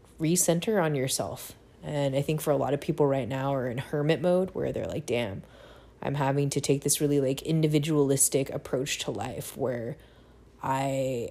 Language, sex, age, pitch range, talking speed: English, female, 20-39, 135-150 Hz, 180 wpm